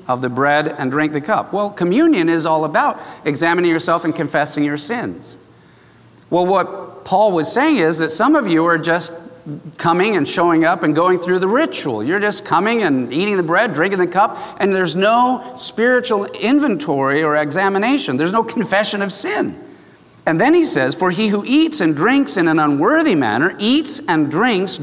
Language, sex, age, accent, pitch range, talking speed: English, male, 40-59, American, 160-230 Hz, 190 wpm